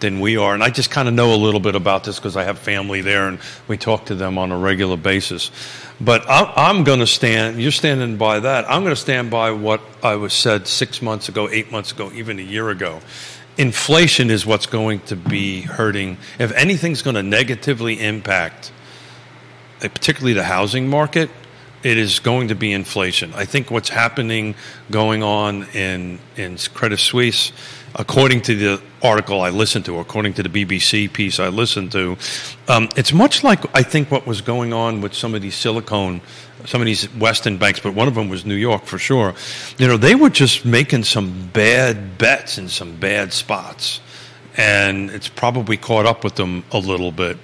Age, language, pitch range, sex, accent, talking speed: 40-59, English, 100-125 Hz, male, American, 195 wpm